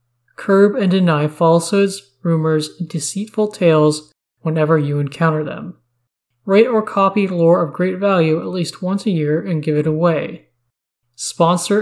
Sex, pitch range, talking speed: male, 150-190 Hz, 145 wpm